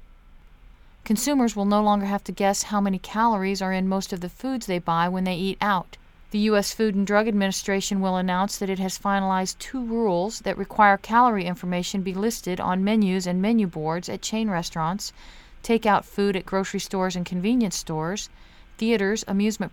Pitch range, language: 190-220 Hz, English